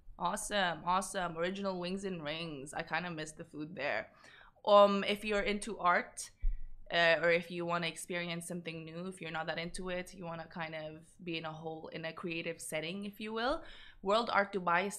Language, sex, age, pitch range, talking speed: Arabic, female, 20-39, 170-210 Hz, 210 wpm